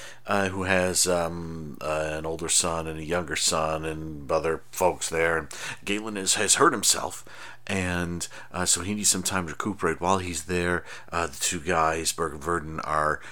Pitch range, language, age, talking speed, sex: 80-95 Hz, English, 40-59, 180 wpm, male